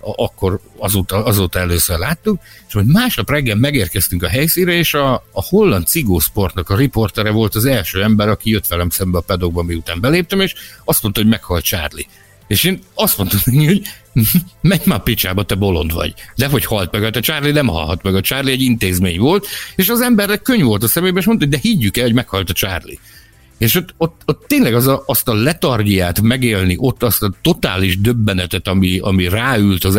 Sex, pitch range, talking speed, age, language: male, 100-145 Hz, 200 wpm, 60-79, Hungarian